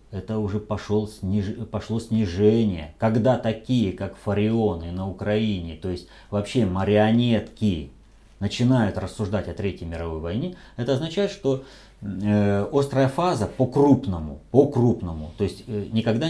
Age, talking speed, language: 30-49, 125 wpm, Russian